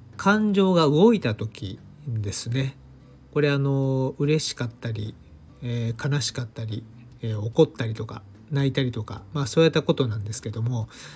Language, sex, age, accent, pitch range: Japanese, male, 40-59, native, 110-155 Hz